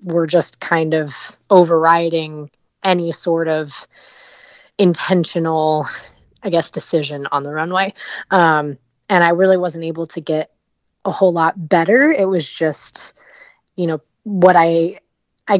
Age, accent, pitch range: 20-39, American, 160-185 Hz